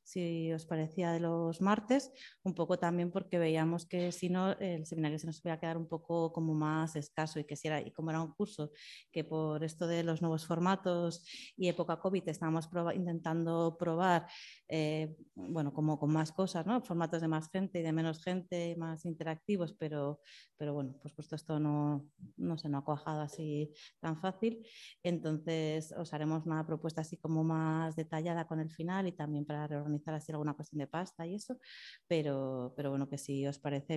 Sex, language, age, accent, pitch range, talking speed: female, Spanish, 30-49, Spanish, 145-170 Hz, 195 wpm